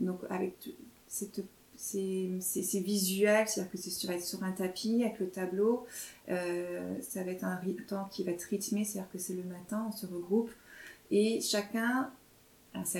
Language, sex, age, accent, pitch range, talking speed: French, female, 30-49, French, 180-215 Hz, 170 wpm